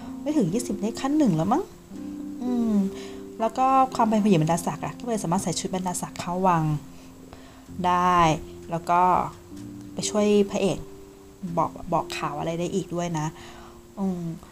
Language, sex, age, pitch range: Thai, female, 20-39, 160-200 Hz